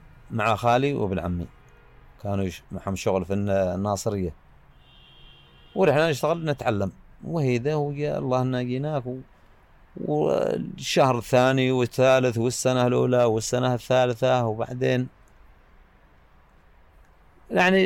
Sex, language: male, Arabic